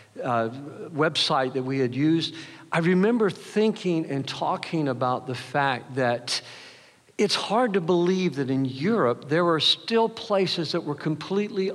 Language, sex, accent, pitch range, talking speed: English, male, American, 130-175 Hz, 150 wpm